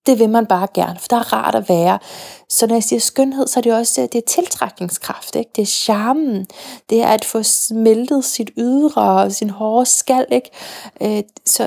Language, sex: Danish, female